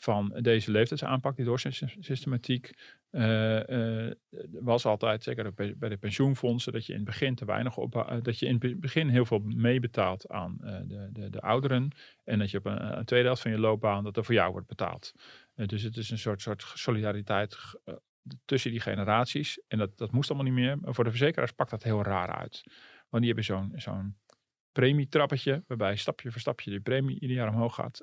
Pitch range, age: 110-130 Hz, 40-59